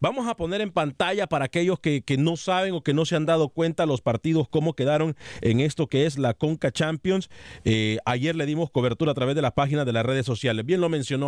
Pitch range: 125-170 Hz